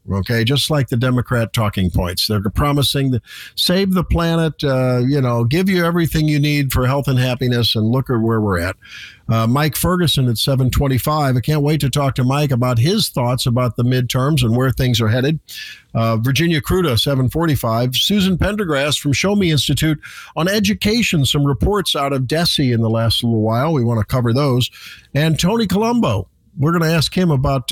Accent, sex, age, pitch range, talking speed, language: American, male, 50-69, 120-160 Hz, 195 wpm, English